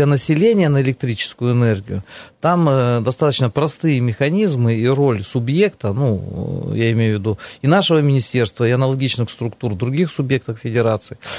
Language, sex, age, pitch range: Russian, male, 30-49, 115-145 Hz